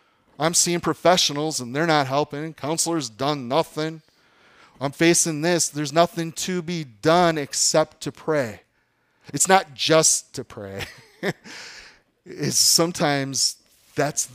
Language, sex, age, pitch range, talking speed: English, male, 30-49, 125-160 Hz, 120 wpm